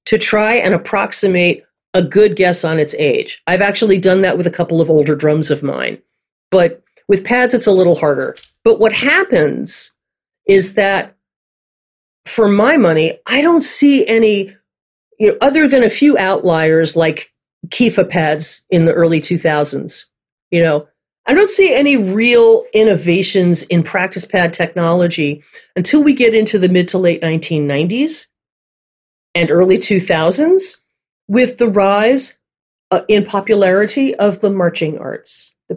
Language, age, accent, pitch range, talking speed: English, 40-59, American, 175-230 Hz, 150 wpm